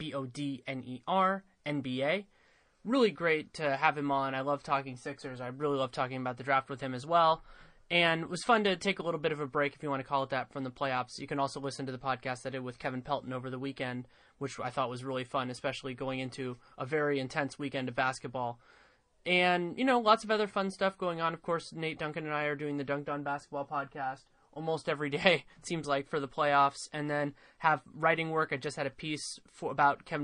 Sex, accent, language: male, American, English